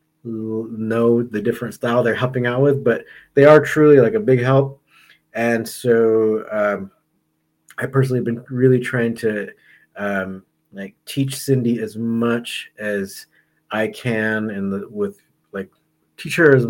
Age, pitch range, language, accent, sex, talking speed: 30-49, 105-125 Hz, English, American, male, 145 wpm